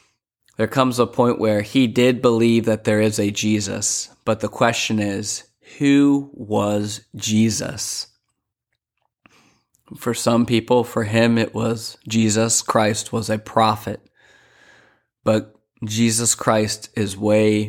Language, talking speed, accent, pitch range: English, 125 wpm, American, 105-115 Hz